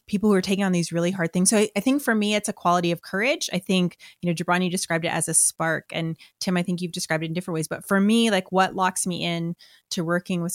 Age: 30-49